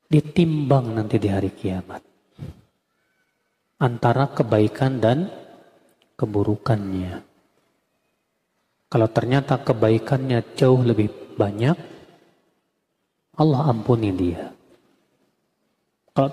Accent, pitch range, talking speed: native, 115-150 Hz, 70 wpm